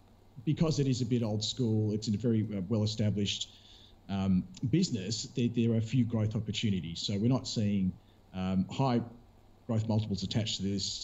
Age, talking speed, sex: 40-59, 175 wpm, male